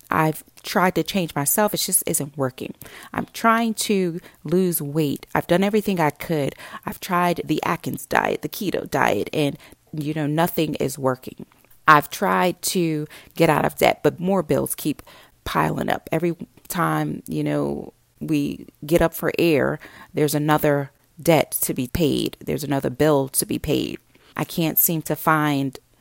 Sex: female